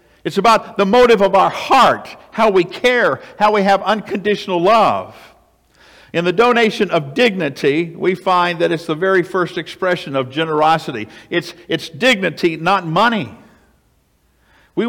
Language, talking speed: English, 145 wpm